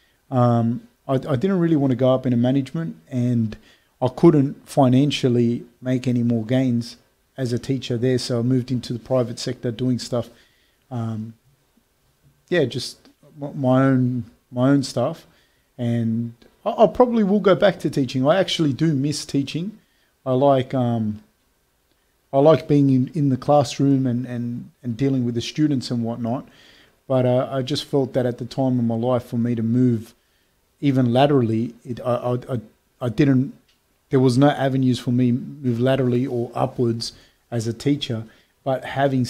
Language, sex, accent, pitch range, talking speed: English, male, Australian, 120-135 Hz, 175 wpm